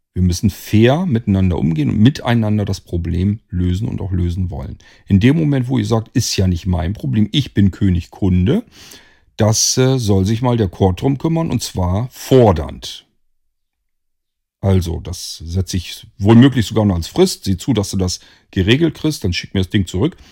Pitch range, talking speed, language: 90-120 Hz, 185 wpm, German